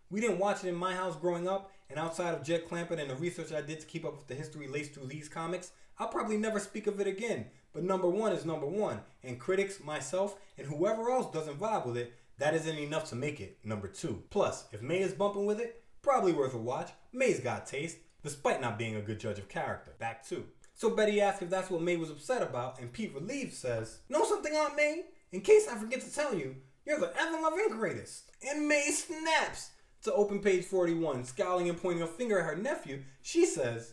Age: 20-39